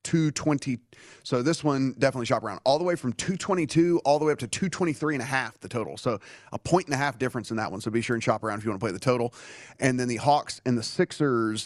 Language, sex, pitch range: English, male, 115-145 Hz